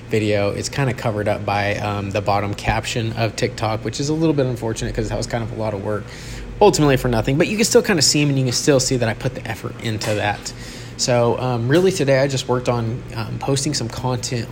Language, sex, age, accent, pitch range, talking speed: English, male, 20-39, American, 110-130 Hz, 260 wpm